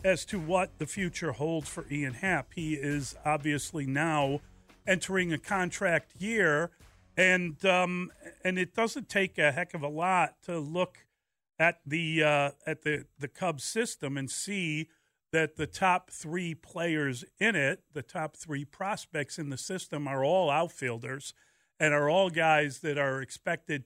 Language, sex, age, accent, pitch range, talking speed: English, male, 50-69, American, 140-175 Hz, 160 wpm